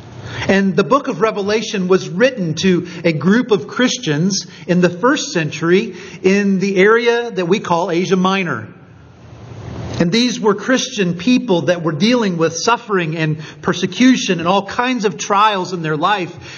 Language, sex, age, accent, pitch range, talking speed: English, male, 50-69, American, 170-215 Hz, 160 wpm